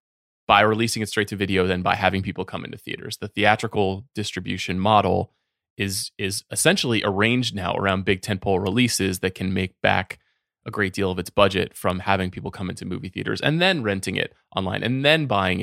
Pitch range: 95-110 Hz